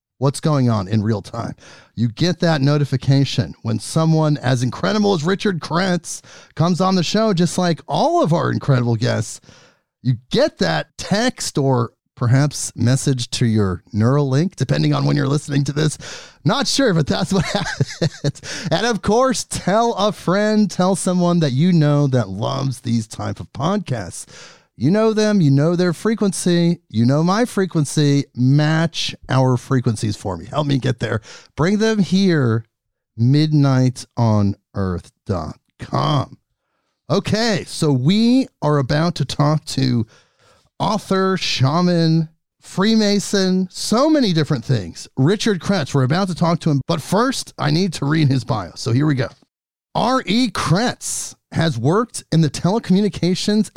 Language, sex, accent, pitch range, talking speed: English, male, American, 130-185 Hz, 150 wpm